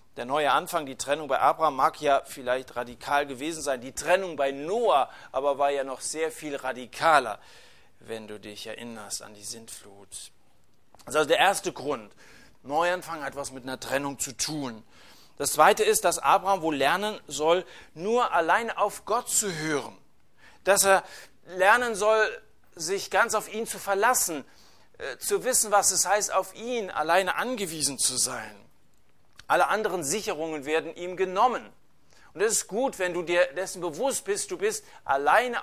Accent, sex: German, male